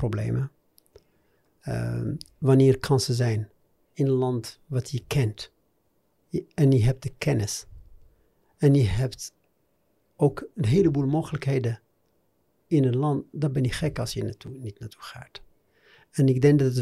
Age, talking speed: 60-79, 150 wpm